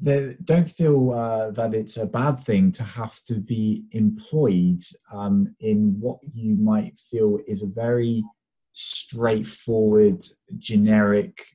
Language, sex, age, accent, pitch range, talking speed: English, male, 20-39, British, 105-145 Hz, 125 wpm